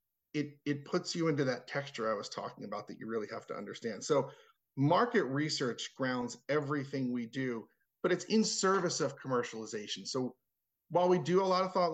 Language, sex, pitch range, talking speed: English, male, 125-165 Hz, 190 wpm